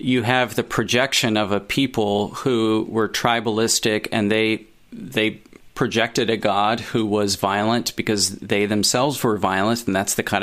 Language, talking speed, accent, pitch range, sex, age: English, 160 wpm, American, 110-125 Hz, male, 40-59